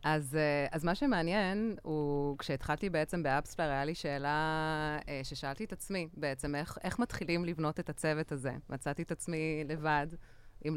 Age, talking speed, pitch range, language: 20-39, 150 wpm, 150-190 Hz, Hebrew